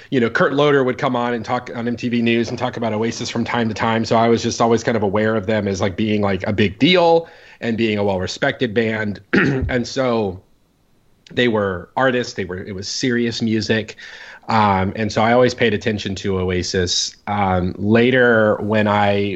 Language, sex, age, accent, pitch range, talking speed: English, male, 30-49, American, 90-115 Hz, 205 wpm